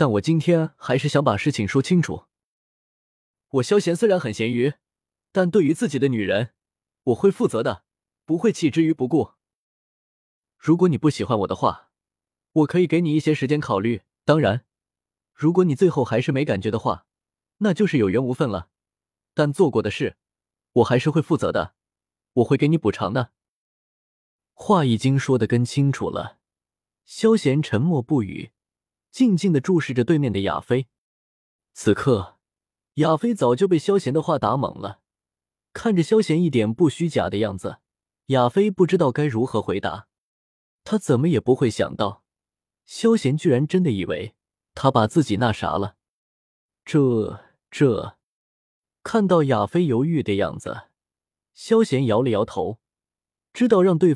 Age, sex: 20-39, male